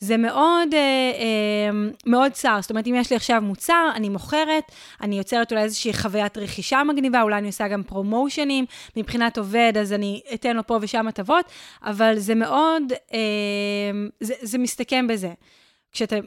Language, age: Hebrew, 20-39